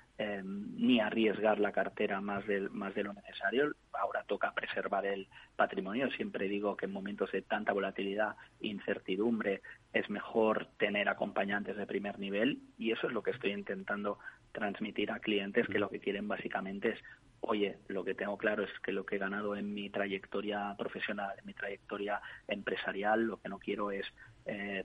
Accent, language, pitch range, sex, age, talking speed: Spanish, Spanish, 100-105 Hz, male, 30-49, 180 wpm